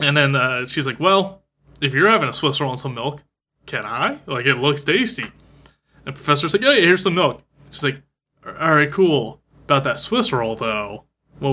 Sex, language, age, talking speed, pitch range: male, English, 20-39, 210 wpm, 130-160 Hz